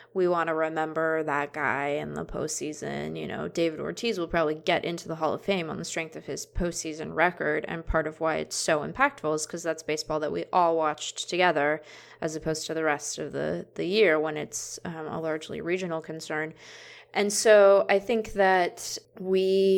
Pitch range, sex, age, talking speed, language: 160-185 Hz, female, 20-39, 200 wpm, English